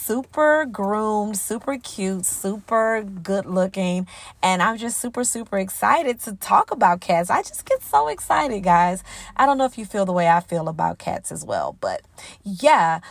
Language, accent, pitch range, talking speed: English, American, 175-235 Hz, 180 wpm